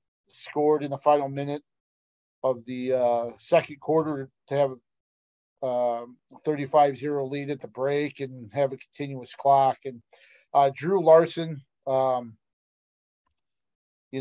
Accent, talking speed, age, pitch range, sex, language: American, 125 wpm, 40-59, 130-150 Hz, male, English